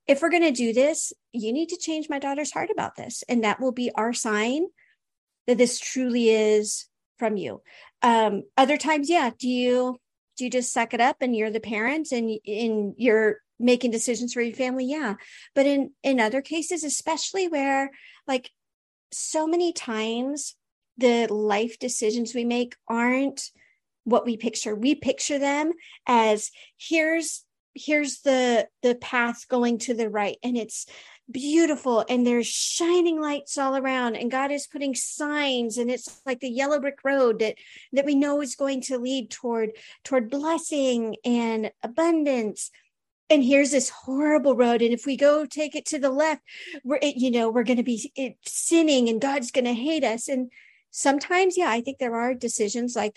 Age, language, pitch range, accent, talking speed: 40-59, English, 235-290 Hz, American, 175 wpm